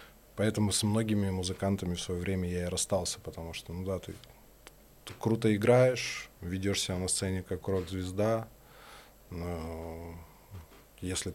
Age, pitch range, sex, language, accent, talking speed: 20-39, 90-100 Hz, male, Russian, native, 135 wpm